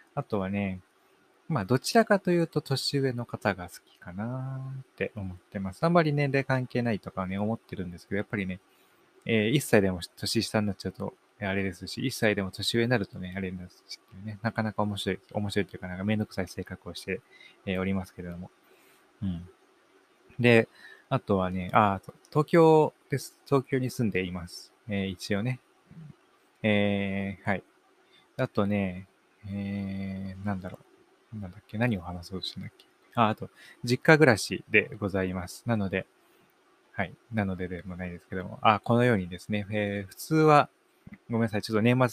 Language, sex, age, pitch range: Japanese, male, 20-39, 95-120 Hz